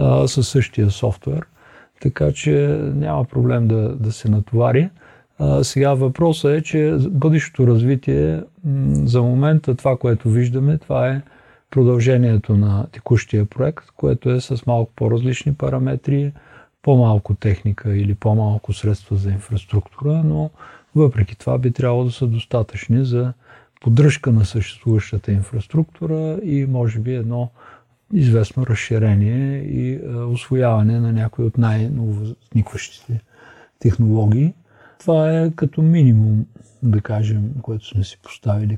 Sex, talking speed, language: male, 120 wpm, Bulgarian